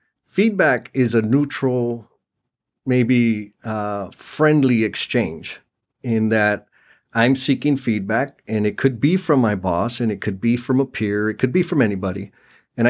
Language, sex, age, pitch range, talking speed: English, male, 40-59, 110-135 Hz, 155 wpm